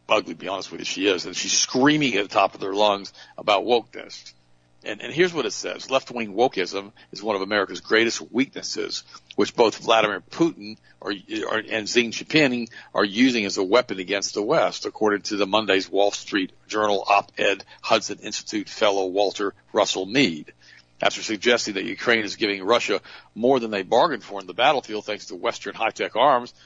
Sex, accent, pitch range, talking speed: male, American, 100-120 Hz, 190 wpm